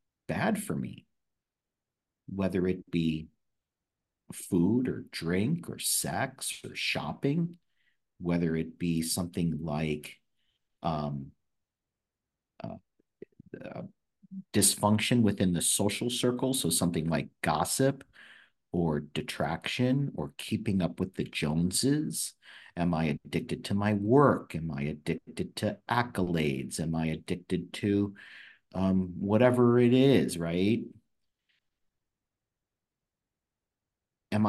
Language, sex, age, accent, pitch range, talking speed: English, male, 50-69, American, 85-120 Hz, 105 wpm